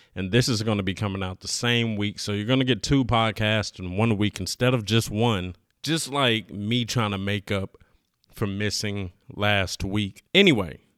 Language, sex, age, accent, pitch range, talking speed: English, male, 30-49, American, 100-120 Hz, 200 wpm